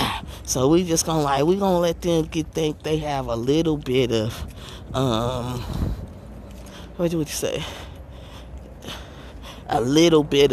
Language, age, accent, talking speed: English, 20-39, American, 135 wpm